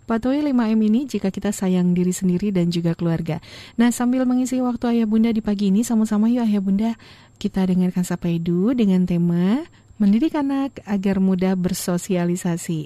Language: Indonesian